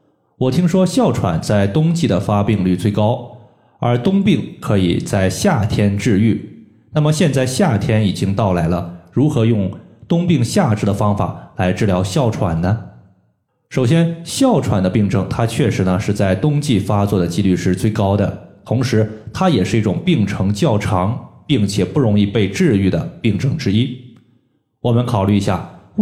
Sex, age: male, 20-39